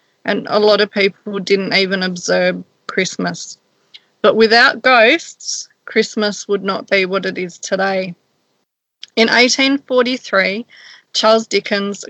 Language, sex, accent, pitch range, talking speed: English, female, Australian, 200-235 Hz, 120 wpm